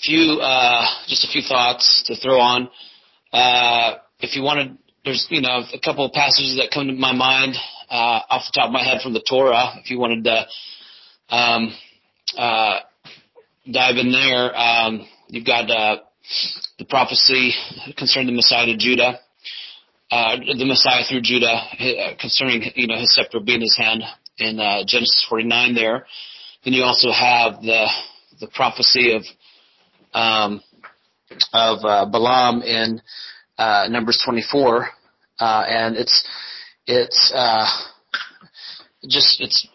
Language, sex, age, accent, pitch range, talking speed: English, male, 30-49, American, 115-125 Hz, 145 wpm